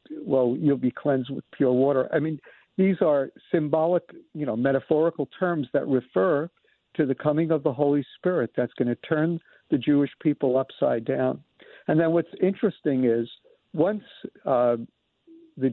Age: 60-79